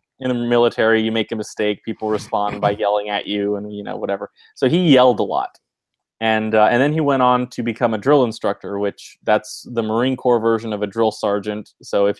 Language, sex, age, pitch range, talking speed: English, male, 20-39, 110-140 Hz, 225 wpm